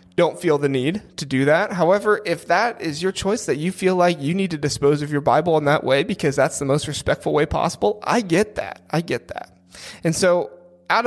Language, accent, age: English, American, 30-49